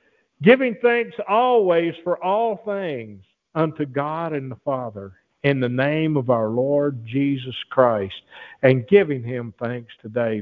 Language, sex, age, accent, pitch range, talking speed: English, male, 50-69, American, 120-195 Hz, 140 wpm